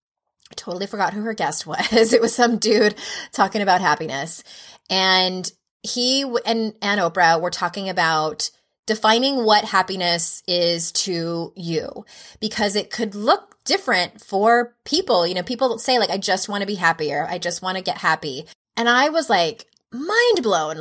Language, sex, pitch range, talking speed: English, female, 170-235 Hz, 165 wpm